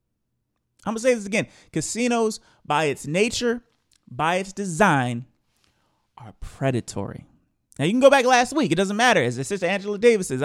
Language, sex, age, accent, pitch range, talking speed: English, male, 30-49, American, 155-215 Hz, 170 wpm